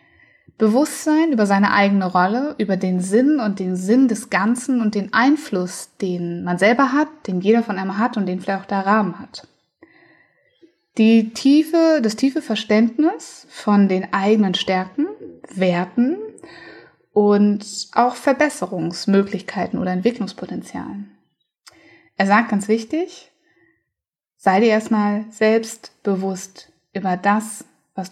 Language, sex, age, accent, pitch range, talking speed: German, female, 20-39, German, 190-260 Hz, 125 wpm